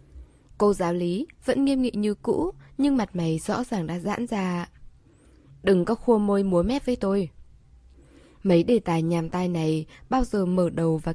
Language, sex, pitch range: Vietnamese, female, 175-240 Hz